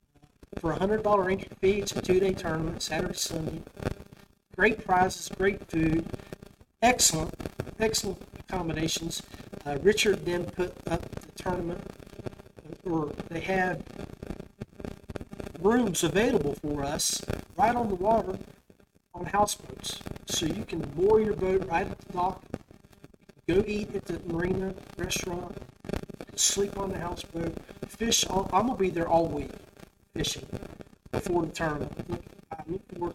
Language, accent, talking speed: English, American, 130 wpm